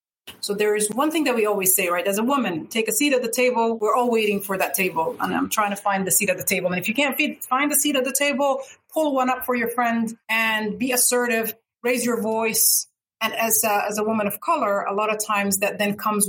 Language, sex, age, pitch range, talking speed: English, female, 30-49, 195-235 Hz, 260 wpm